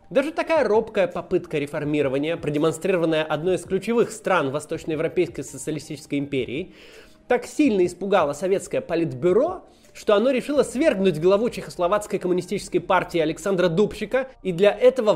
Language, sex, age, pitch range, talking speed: Russian, male, 20-39, 170-235 Hz, 125 wpm